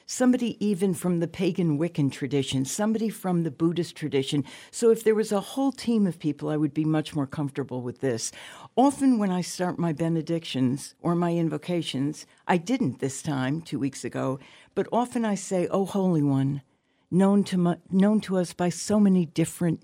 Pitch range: 145-185 Hz